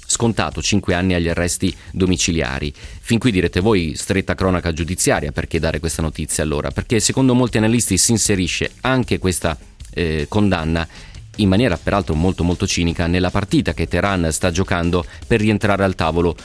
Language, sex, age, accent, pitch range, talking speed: Italian, male, 30-49, native, 85-105 Hz, 155 wpm